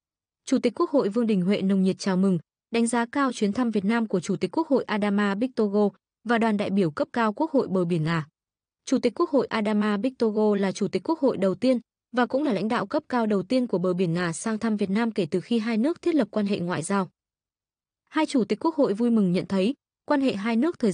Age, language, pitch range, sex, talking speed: 20-39, Vietnamese, 195-255 Hz, female, 260 wpm